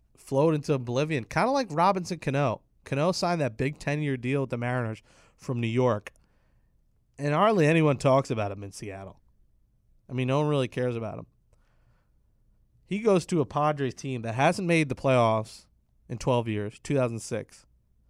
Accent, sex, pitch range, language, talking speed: American, male, 115-145 Hz, English, 170 wpm